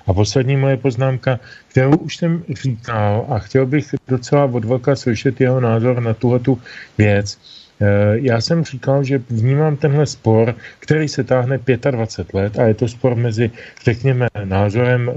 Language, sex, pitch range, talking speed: Slovak, male, 100-130 Hz, 155 wpm